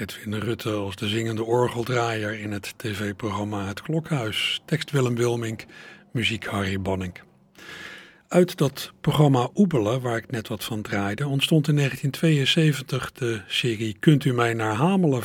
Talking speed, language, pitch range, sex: 145 wpm, Dutch, 105-135 Hz, male